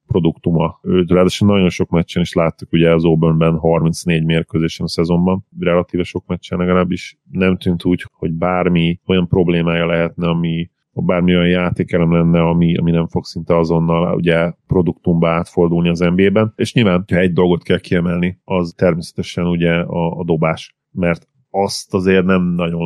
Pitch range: 85-90 Hz